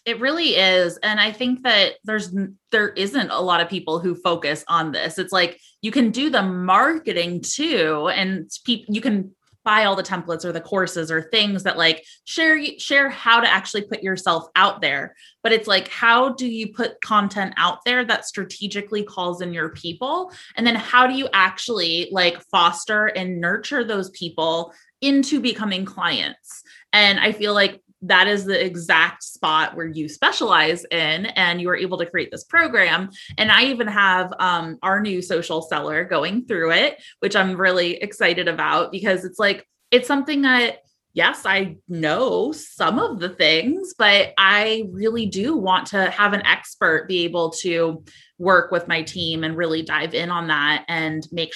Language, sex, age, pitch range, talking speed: English, female, 20-39, 175-225 Hz, 180 wpm